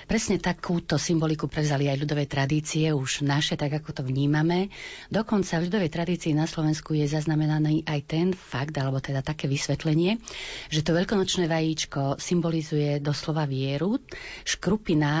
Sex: female